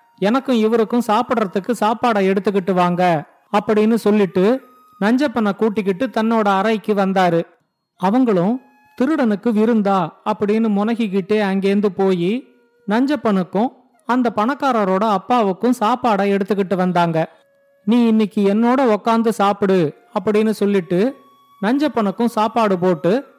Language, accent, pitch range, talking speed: Tamil, native, 195-235 Hz, 90 wpm